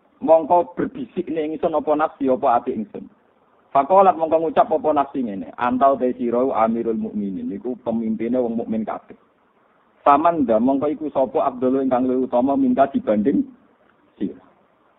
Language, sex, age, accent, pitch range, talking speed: Indonesian, male, 50-69, native, 120-160 Hz, 140 wpm